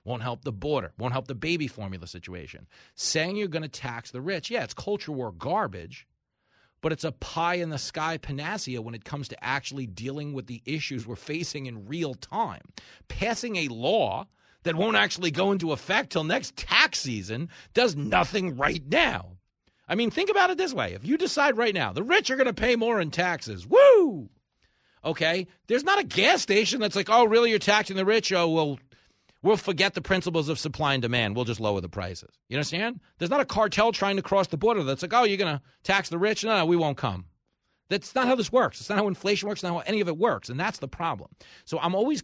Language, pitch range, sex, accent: English, 130-210 Hz, male, American